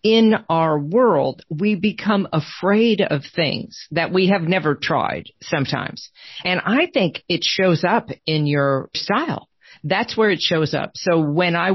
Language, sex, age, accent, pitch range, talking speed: English, female, 50-69, American, 150-205 Hz, 160 wpm